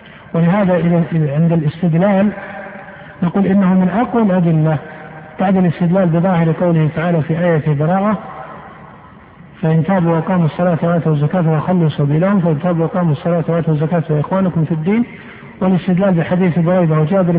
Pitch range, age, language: 165-200 Hz, 60-79, Arabic